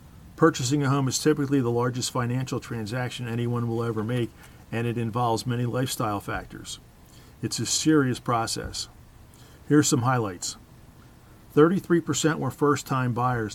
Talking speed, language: 135 wpm, English